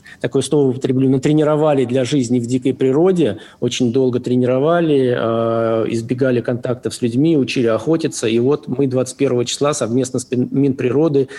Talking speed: 135 wpm